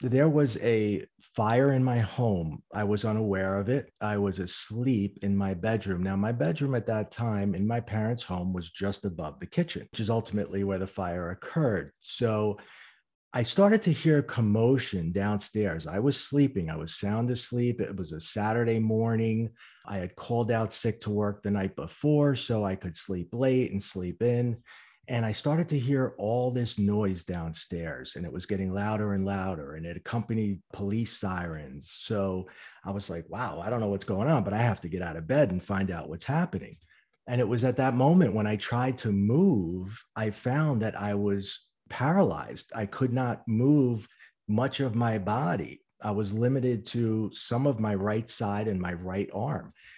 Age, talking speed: 40-59, 190 wpm